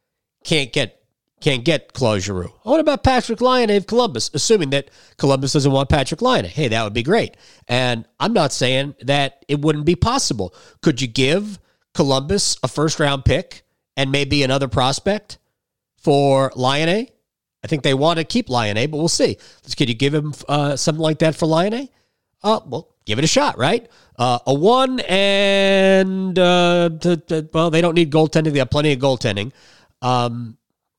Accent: American